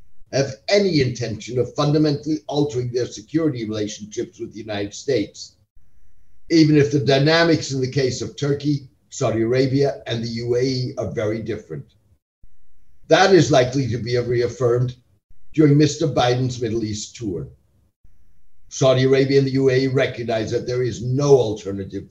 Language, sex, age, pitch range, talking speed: English, male, 60-79, 105-140 Hz, 145 wpm